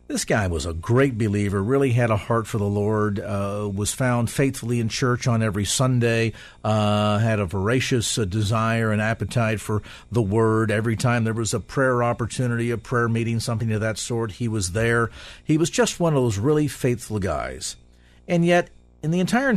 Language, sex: English, male